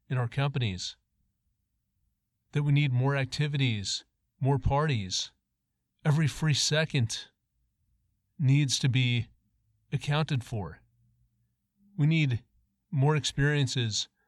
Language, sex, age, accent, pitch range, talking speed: English, male, 40-59, American, 115-145 Hz, 90 wpm